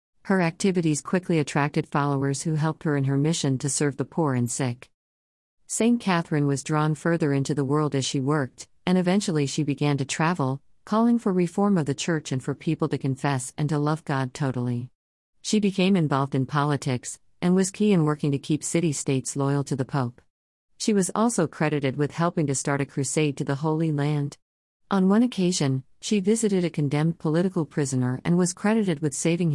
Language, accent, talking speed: Malayalam, American, 195 wpm